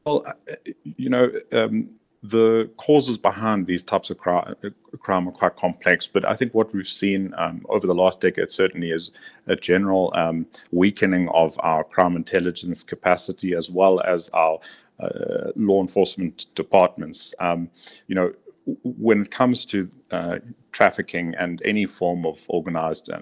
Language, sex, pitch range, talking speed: English, male, 85-110 Hz, 150 wpm